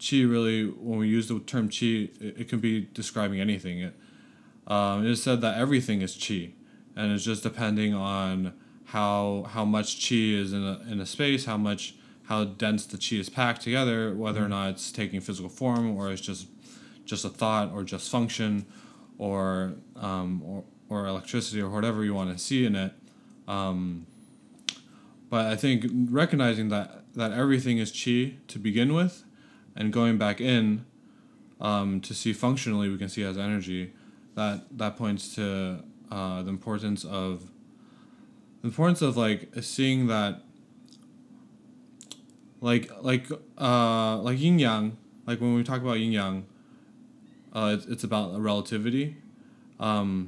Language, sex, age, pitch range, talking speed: English, male, 20-39, 100-125 Hz, 160 wpm